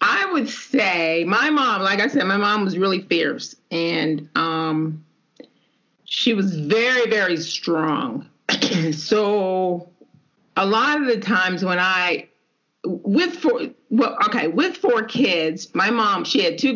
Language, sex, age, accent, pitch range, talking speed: English, female, 40-59, American, 170-230 Hz, 145 wpm